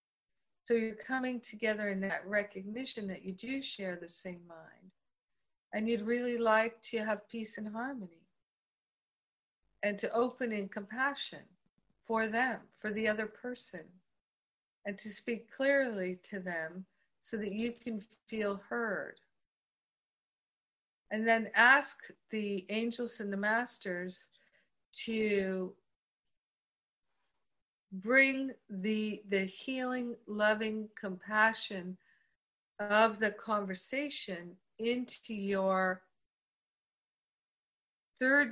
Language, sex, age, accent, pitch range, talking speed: English, female, 50-69, American, 195-235 Hz, 105 wpm